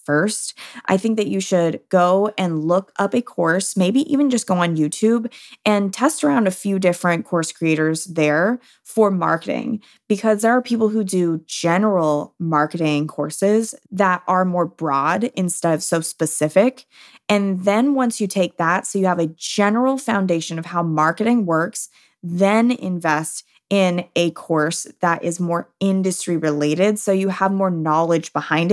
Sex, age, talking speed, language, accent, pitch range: female, 20-39, 165 wpm, English, American, 170-220 Hz